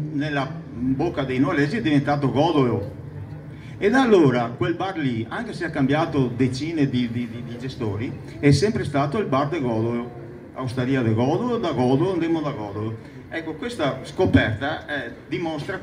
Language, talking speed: Italian, 160 wpm